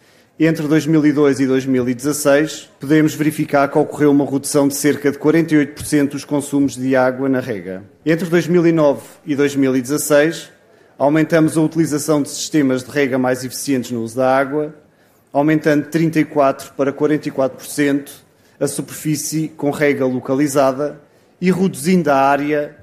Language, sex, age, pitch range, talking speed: Portuguese, male, 30-49, 135-155 Hz, 135 wpm